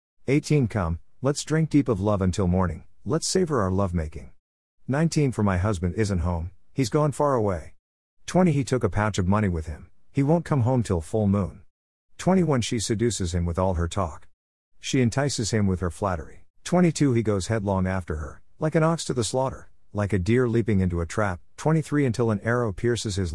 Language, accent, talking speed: English, American, 210 wpm